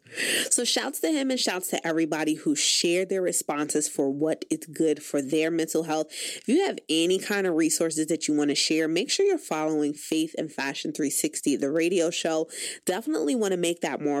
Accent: American